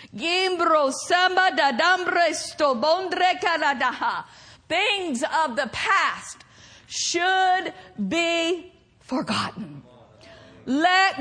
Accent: American